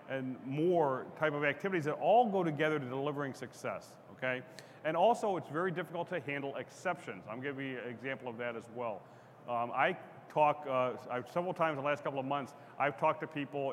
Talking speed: 210 wpm